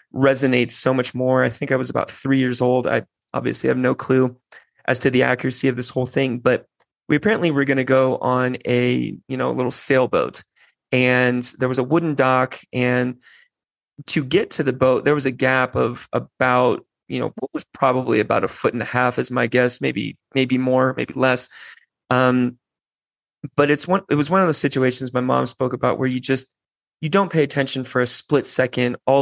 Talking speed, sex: 205 wpm, male